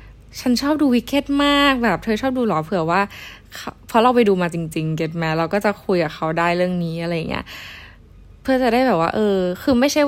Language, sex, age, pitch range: Thai, female, 10-29, 165-220 Hz